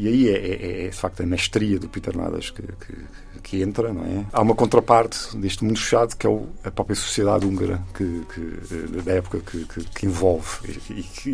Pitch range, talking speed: 90-105 Hz, 195 wpm